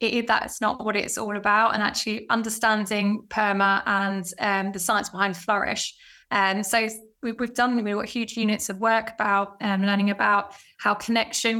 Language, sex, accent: English, female, British